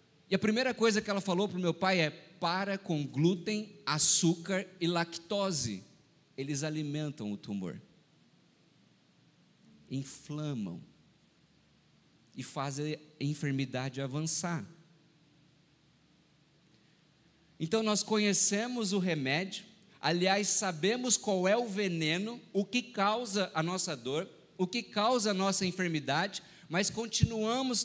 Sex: male